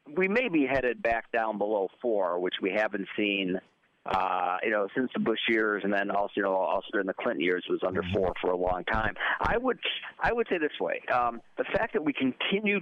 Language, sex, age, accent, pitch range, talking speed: English, male, 50-69, American, 105-160 Hz, 225 wpm